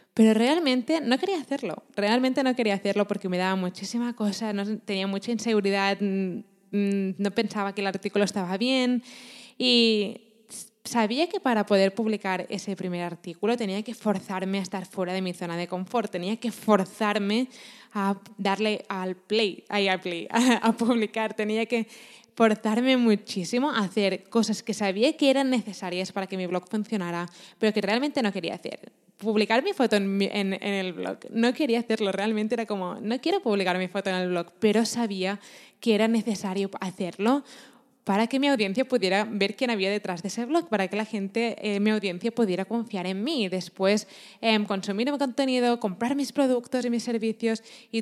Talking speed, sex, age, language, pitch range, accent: 180 wpm, female, 20-39, Spanish, 195-235 Hz, Spanish